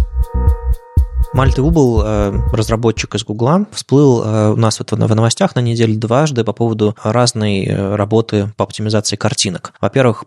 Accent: native